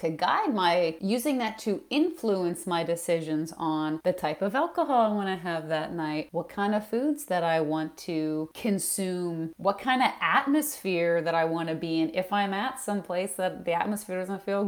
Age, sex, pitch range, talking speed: 30-49, female, 170-205 Hz, 195 wpm